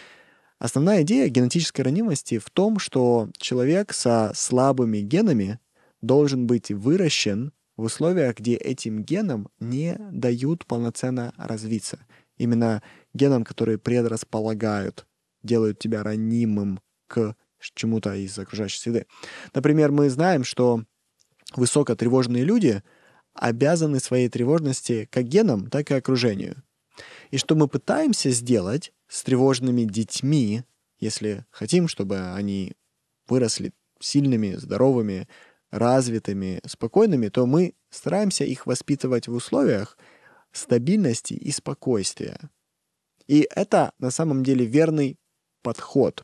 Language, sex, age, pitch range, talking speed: Russian, male, 20-39, 115-145 Hz, 110 wpm